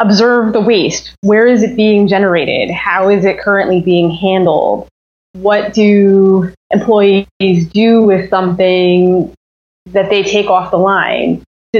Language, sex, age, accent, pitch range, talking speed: English, female, 20-39, American, 180-225 Hz, 135 wpm